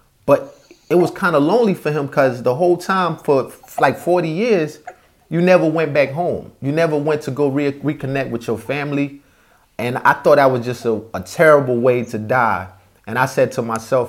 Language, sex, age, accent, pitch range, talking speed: English, male, 30-49, American, 115-140 Hz, 200 wpm